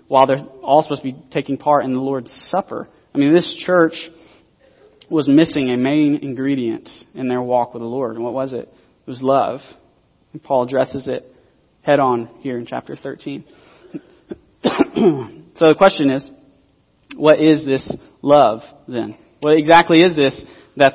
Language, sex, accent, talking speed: English, male, American, 165 wpm